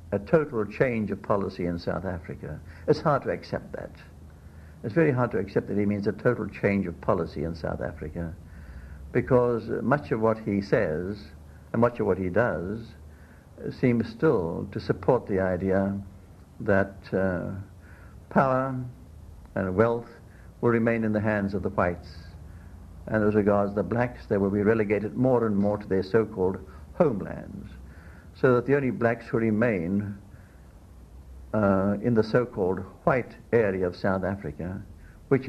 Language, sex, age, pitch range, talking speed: English, male, 60-79, 90-110 Hz, 155 wpm